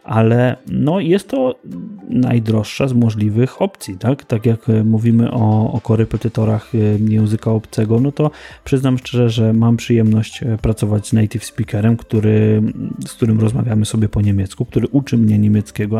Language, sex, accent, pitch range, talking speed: Polish, male, native, 110-120 Hz, 145 wpm